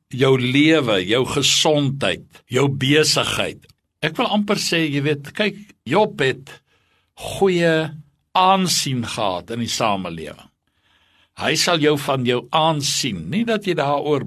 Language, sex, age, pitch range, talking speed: English, male, 60-79, 120-160 Hz, 130 wpm